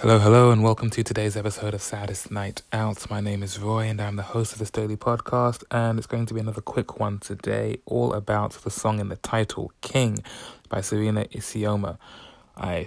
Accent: British